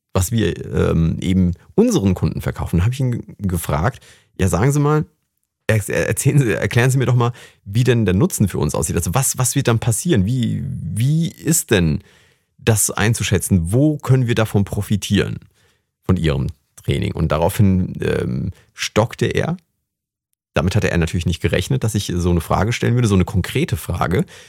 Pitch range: 90-120 Hz